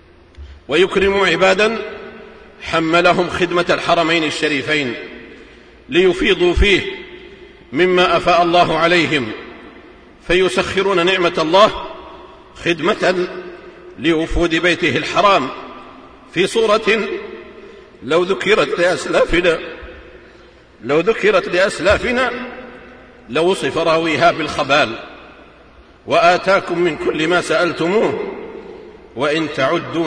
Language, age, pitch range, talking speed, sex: Arabic, 50-69, 165-215 Hz, 70 wpm, male